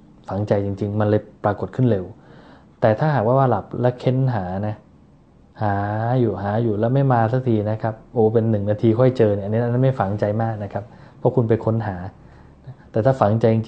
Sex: male